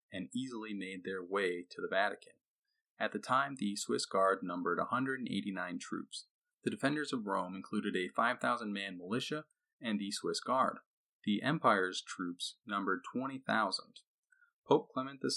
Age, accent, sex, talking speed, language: 30-49, American, male, 140 wpm, English